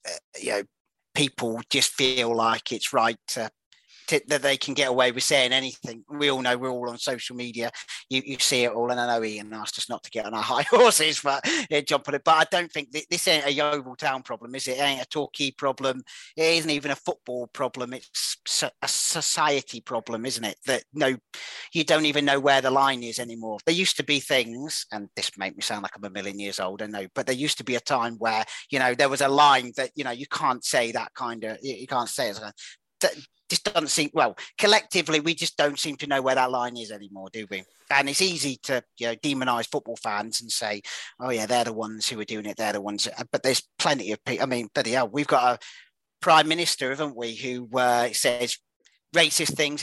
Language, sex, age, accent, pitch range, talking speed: English, male, 40-59, British, 120-145 Hz, 245 wpm